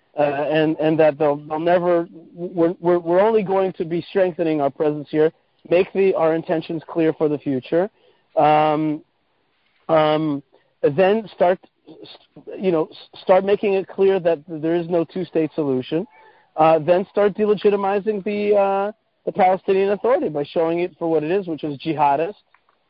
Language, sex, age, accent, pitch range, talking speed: English, male, 40-59, American, 155-185 Hz, 155 wpm